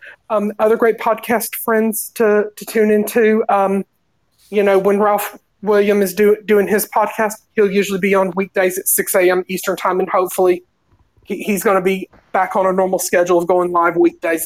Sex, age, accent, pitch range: male, 30-49, American, 175-205 Hz